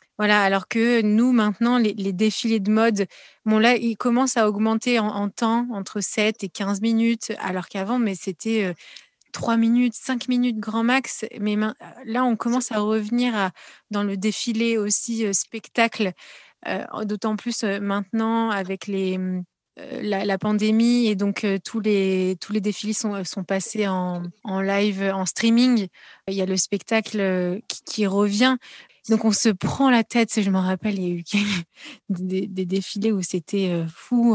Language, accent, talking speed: French, French, 180 wpm